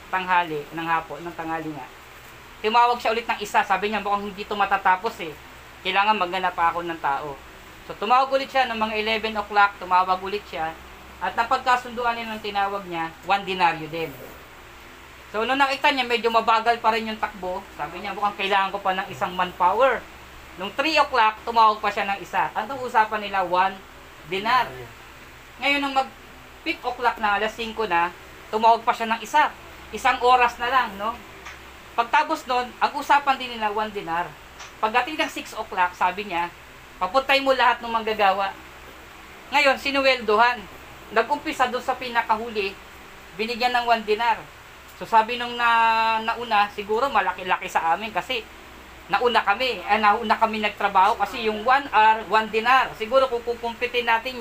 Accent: native